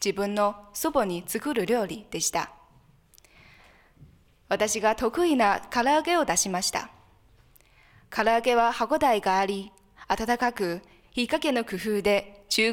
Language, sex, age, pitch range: Japanese, female, 20-39, 190-270 Hz